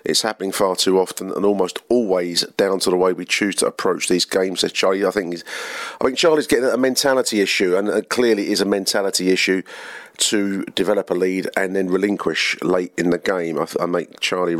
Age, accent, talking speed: 40-59, British, 220 wpm